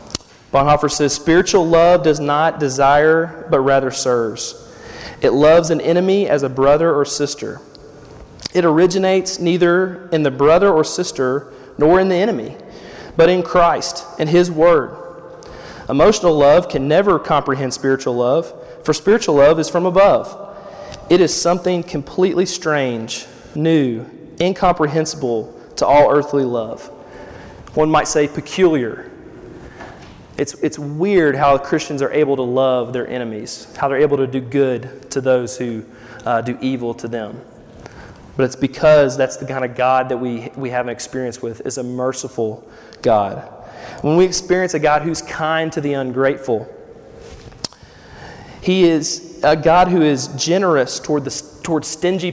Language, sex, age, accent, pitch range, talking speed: English, male, 30-49, American, 130-170 Hz, 150 wpm